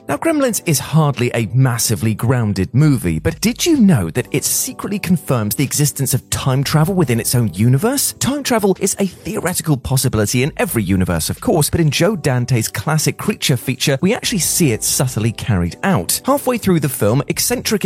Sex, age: male, 30-49